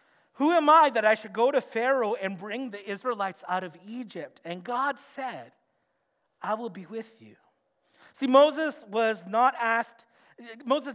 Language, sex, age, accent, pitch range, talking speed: English, male, 40-59, American, 190-260 Hz, 165 wpm